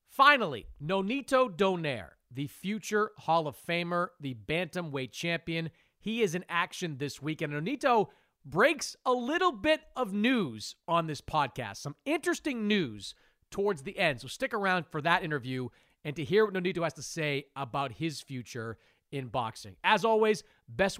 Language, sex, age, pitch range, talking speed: English, male, 40-59, 135-200 Hz, 160 wpm